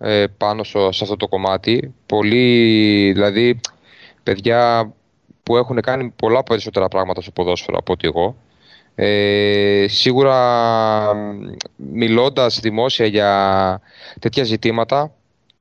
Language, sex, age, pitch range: Greek, male, 20-39, 100-125 Hz